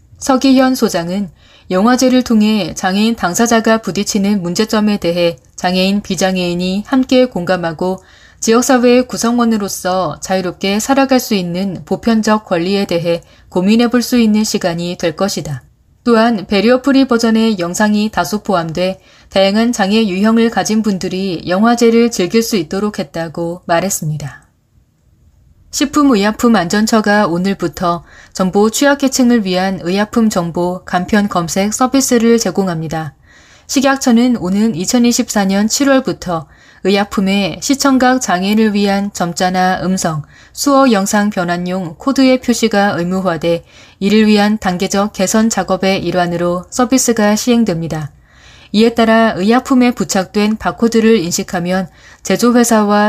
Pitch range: 180-230 Hz